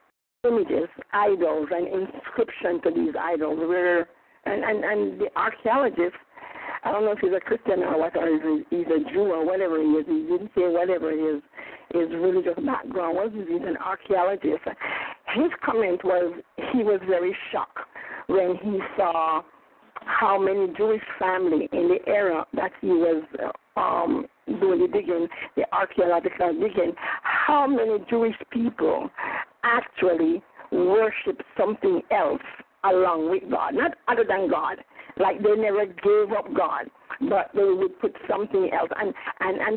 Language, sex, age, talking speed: English, female, 60-79, 150 wpm